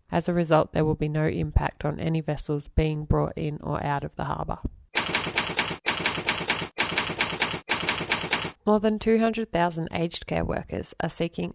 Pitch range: 145-165 Hz